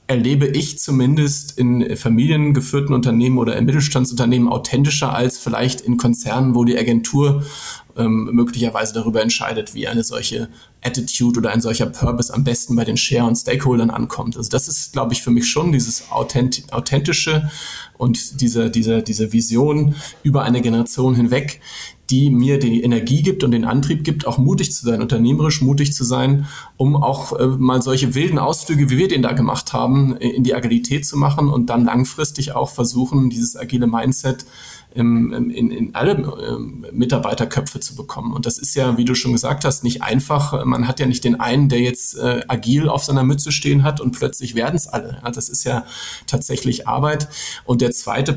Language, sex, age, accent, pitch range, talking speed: German, male, 30-49, German, 120-140 Hz, 180 wpm